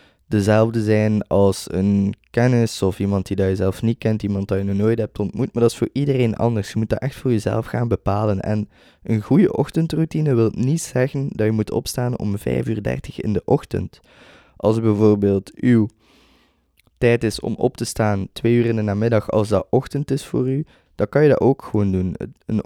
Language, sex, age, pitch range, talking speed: Dutch, male, 20-39, 105-125 Hz, 210 wpm